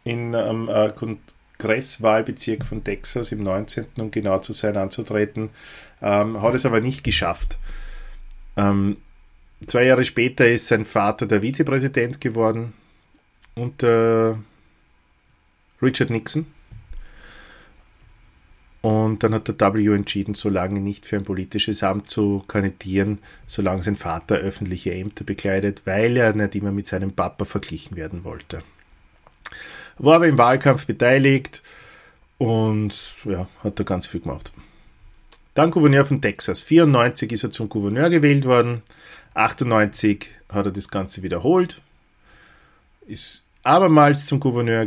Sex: male